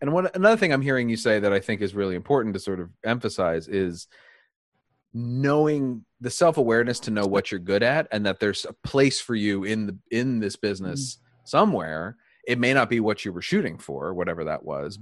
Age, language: 30-49, English